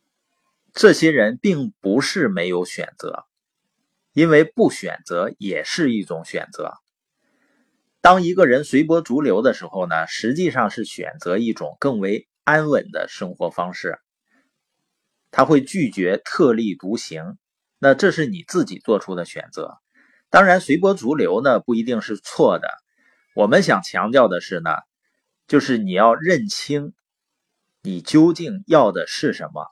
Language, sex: Chinese, male